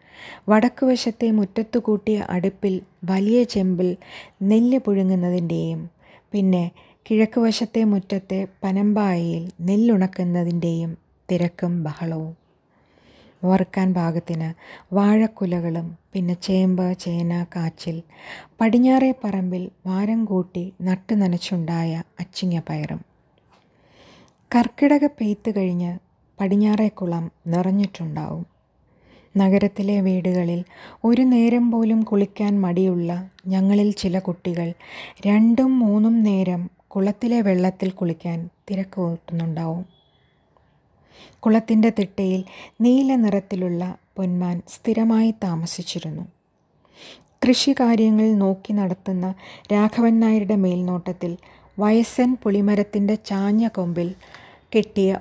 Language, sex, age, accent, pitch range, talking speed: Malayalam, female, 20-39, native, 175-215 Hz, 75 wpm